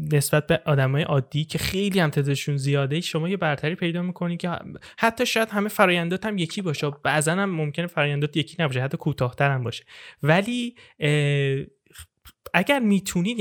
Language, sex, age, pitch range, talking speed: Persian, male, 10-29, 130-170 Hz, 150 wpm